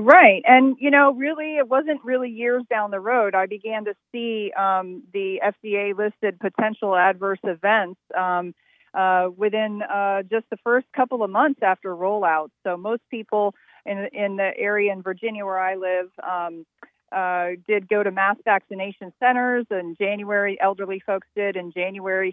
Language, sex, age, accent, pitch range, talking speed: English, female, 40-59, American, 185-225 Hz, 165 wpm